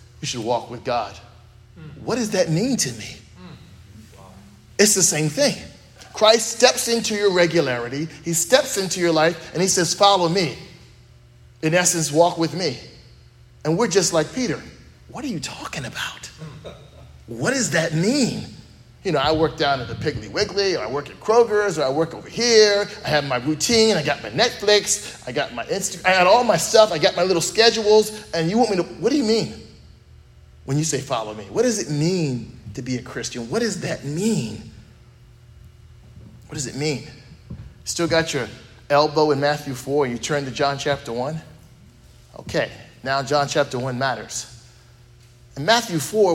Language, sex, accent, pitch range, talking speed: English, male, American, 125-185 Hz, 185 wpm